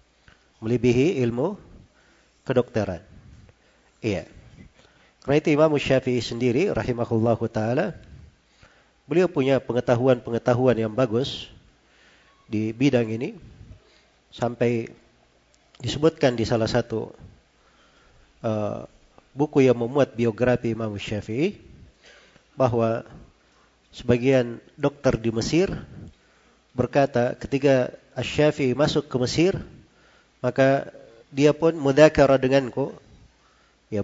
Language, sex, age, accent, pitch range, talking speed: Indonesian, male, 40-59, native, 115-135 Hz, 85 wpm